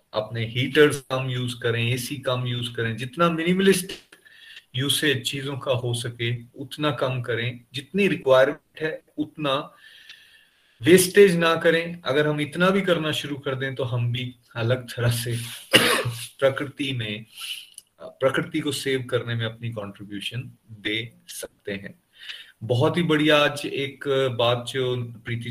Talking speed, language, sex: 140 wpm, Hindi, male